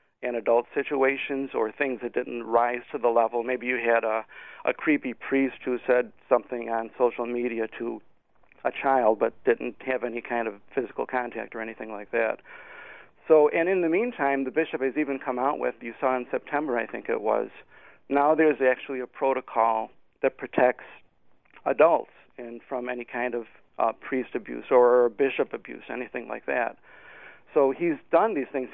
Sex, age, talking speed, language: male, 50-69, 180 wpm, English